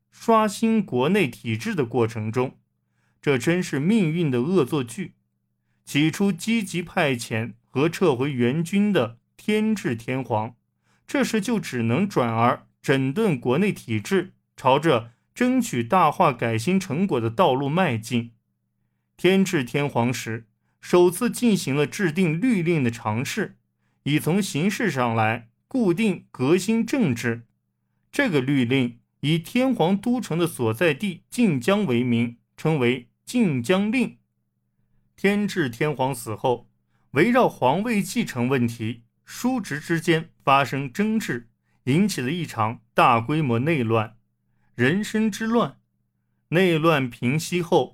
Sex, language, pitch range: male, Chinese, 115-195 Hz